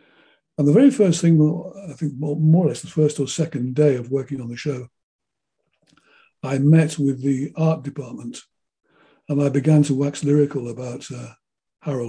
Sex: male